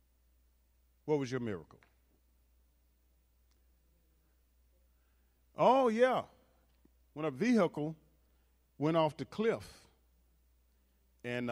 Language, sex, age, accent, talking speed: English, male, 40-59, American, 75 wpm